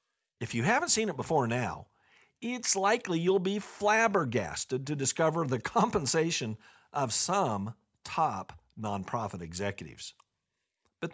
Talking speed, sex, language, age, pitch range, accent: 120 wpm, male, English, 50-69, 125-195 Hz, American